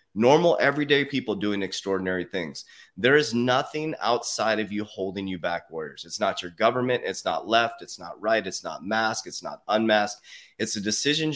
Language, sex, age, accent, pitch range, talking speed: English, male, 30-49, American, 100-125 Hz, 185 wpm